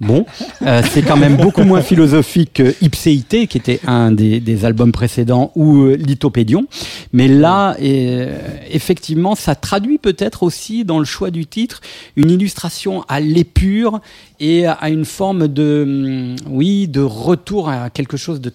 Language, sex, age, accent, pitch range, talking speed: French, male, 40-59, French, 120-155 Hz, 155 wpm